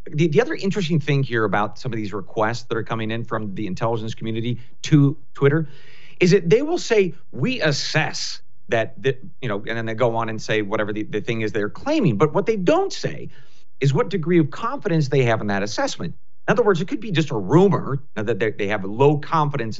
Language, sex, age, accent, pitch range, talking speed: English, male, 40-59, American, 110-165 Hz, 225 wpm